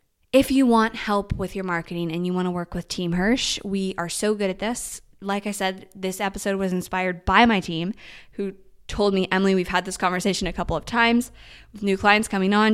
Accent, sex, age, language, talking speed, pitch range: American, female, 20-39, English, 225 wpm, 170-200 Hz